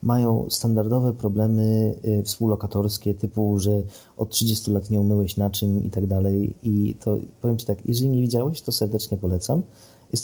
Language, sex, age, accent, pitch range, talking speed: Polish, male, 30-49, native, 100-120 Hz, 160 wpm